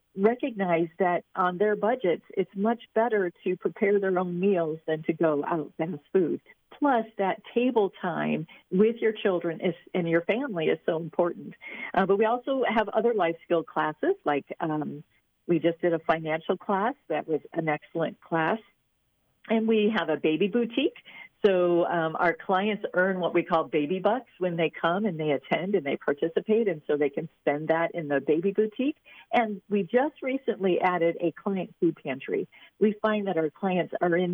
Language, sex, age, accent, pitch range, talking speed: English, female, 50-69, American, 165-205 Hz, 185 wpm